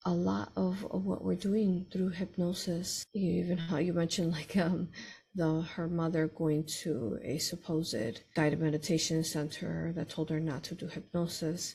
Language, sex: English, female